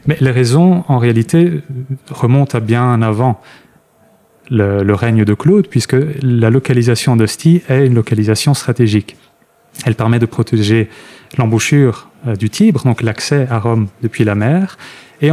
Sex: male